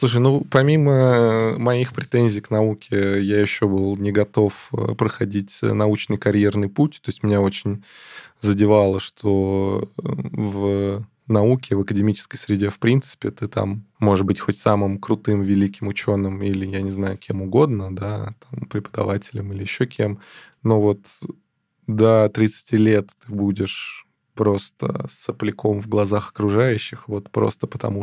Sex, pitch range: male, 100-120 Hz